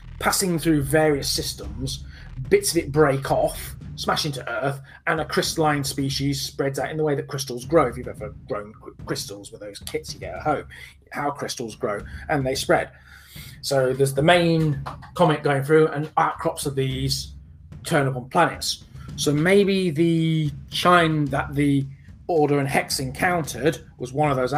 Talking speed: 170 wpm